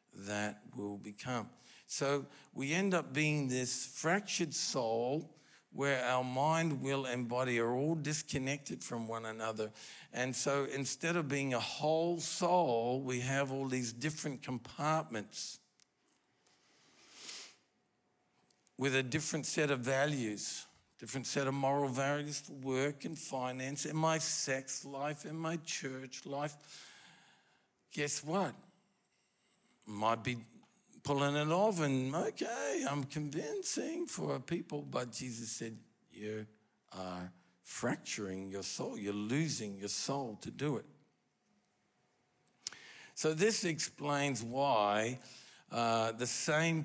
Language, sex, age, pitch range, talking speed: English, male, 50-69, 115-150 Hz, 120 wpm